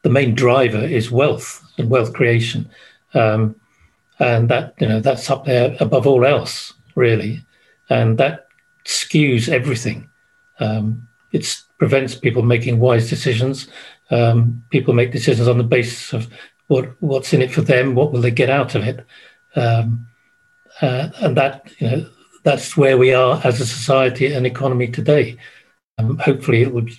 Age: 50-69